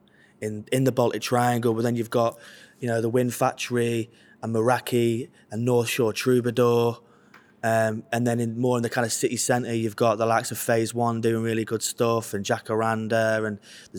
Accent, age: British, 20-39